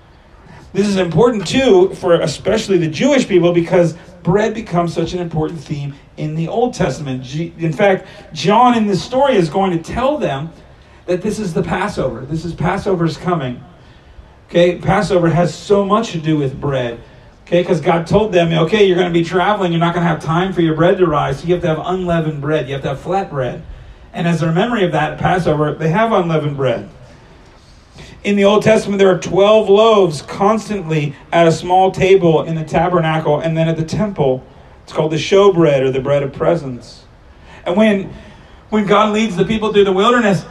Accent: American